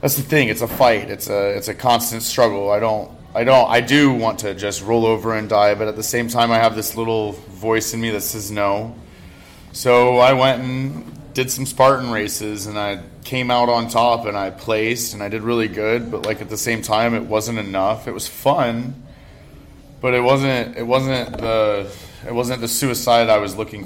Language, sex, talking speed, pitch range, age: English, male, 220 wpm, 105-120 Hz, 30-49